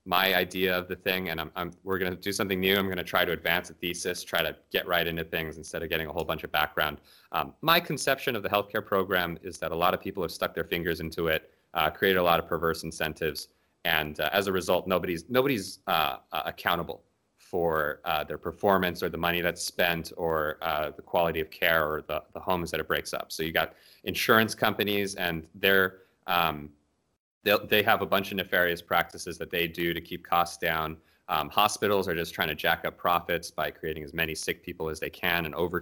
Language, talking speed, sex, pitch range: English, 230 wpm, male, 80-95 Hz